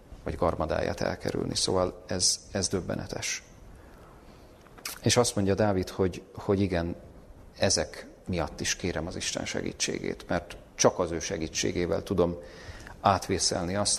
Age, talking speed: 40-59, 125 wpm